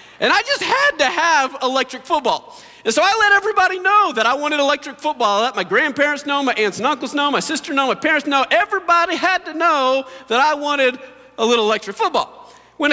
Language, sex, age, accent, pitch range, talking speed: English, male, 40-59, American, 255-370 Hz, 220 wpm